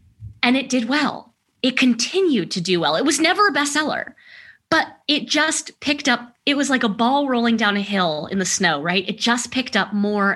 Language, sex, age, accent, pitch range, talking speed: English, female, 20-39, American, 180-235 Hz, 215 wpm